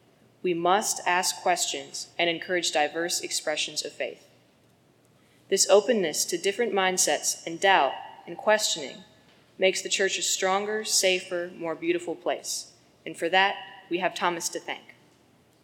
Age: 20-39